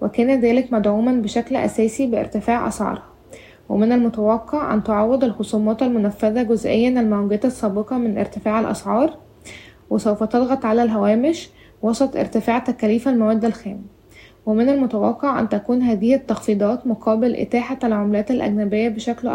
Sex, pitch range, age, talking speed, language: female, 215-250 Hz, 20-39, 120 wpm, Arabic